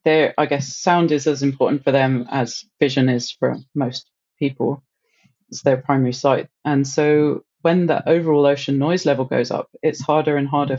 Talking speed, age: 185 wpm, 30-49